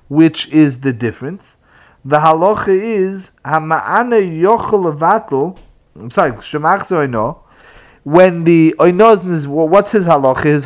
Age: 30-49